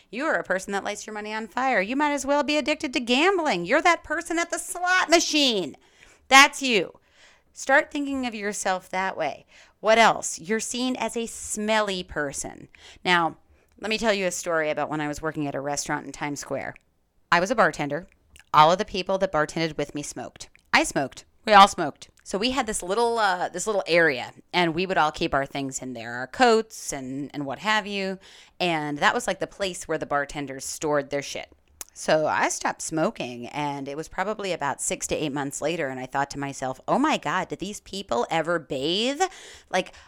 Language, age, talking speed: English, 30-49, 215 wpm